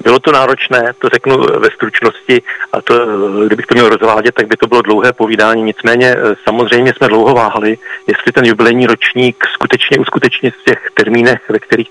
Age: 40-59